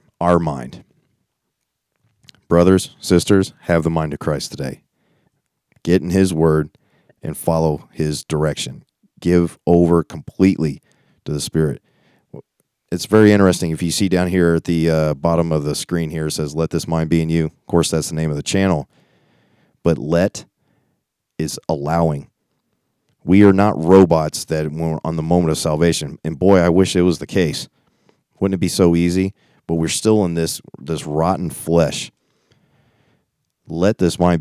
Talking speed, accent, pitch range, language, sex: 165 wpm, American, 80-90 Hz, English, male